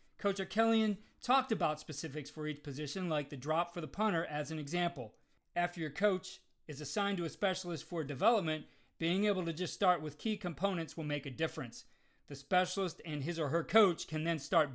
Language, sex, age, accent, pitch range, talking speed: English, male, 40-59, American, 145-180 Hz, 200 wpm